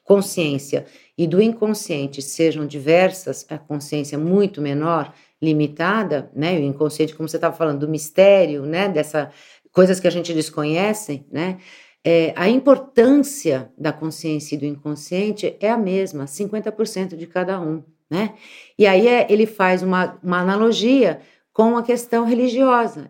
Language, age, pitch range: Portuguese, 50-69, 150-195 Hz